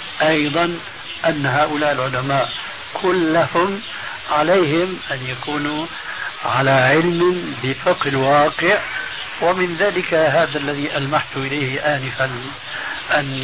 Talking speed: 90 wpm